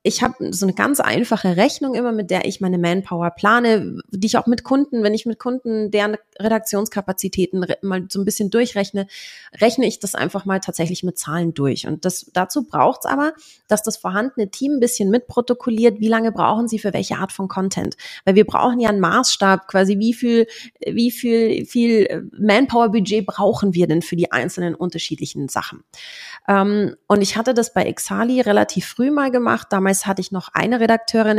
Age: 30-49